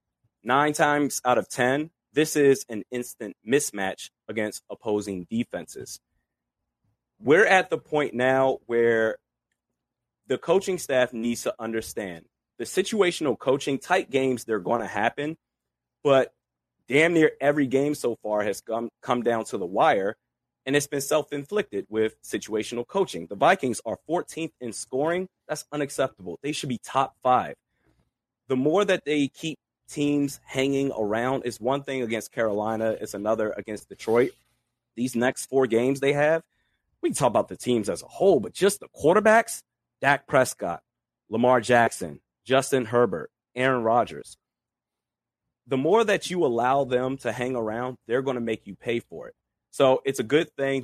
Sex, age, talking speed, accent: male, 30-49, 160 wpm, American